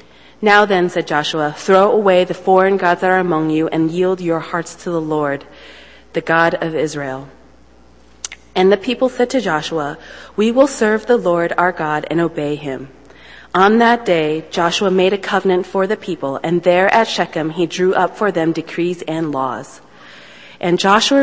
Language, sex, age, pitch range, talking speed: English, female, 30-49, 155-195 Hz, 180 wpm